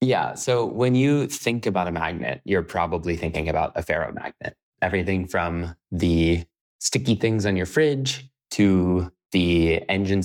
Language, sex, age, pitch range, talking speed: English, male, 20-39, 90-105 Hz, 145 wpm